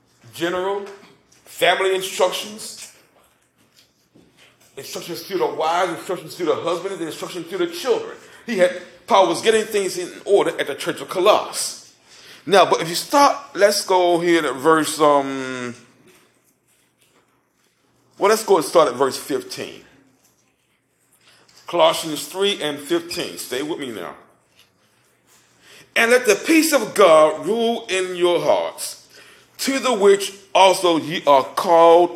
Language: English